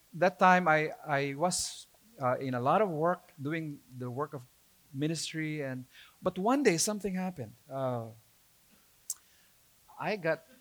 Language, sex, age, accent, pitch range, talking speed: English, male, 40-59, Filipino, 130-195 Hz, 140 wpm